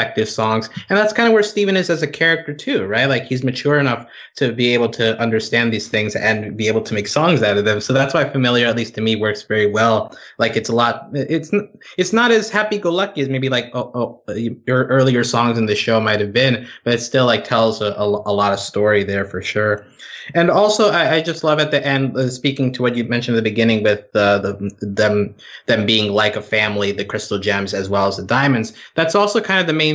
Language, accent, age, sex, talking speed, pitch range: English, American, 20-39, male, 245 wpm, 105-135 Hz